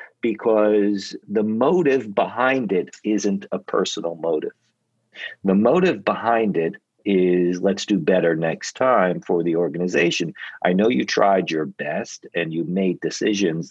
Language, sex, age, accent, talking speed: English, male, 50-69, American, 140 wpm